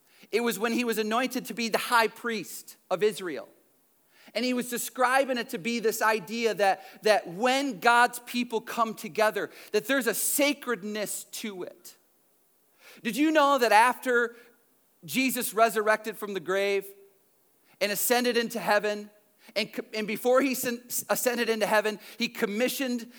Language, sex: English, male